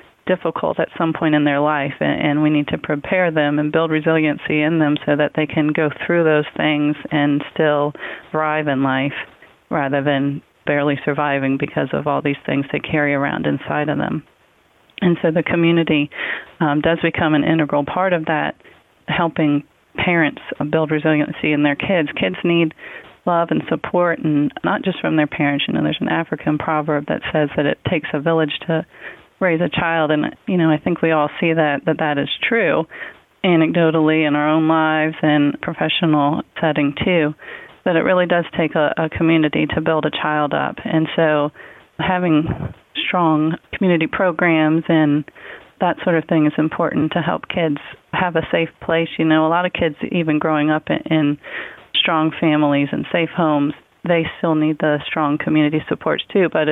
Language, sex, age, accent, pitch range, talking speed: English, female, 30-49, American, 150-165 Hz, 180 wpm